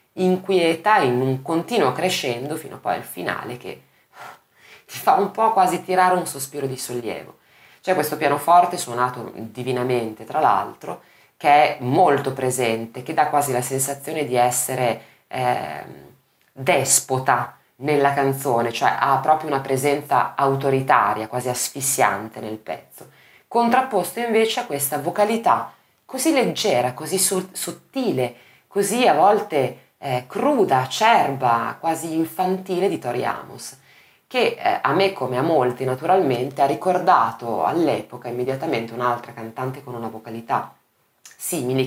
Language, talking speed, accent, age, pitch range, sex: Italian, 130 wpm, native, 20-39, 125-175 Hz, female